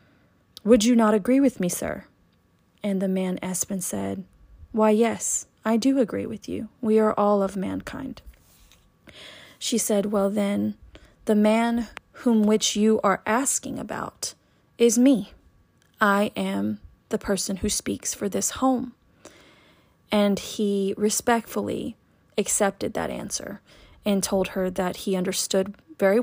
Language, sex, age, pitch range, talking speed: English, female, 30-49, 190-220 Hz, 135 wpm